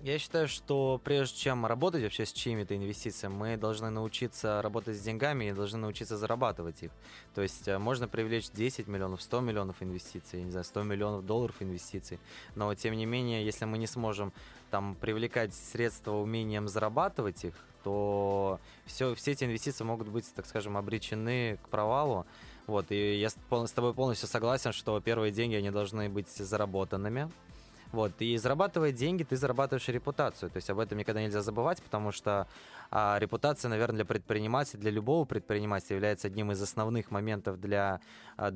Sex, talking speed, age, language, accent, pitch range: male, 165 wpm, 20-39, Russian, native, 100-115 Hz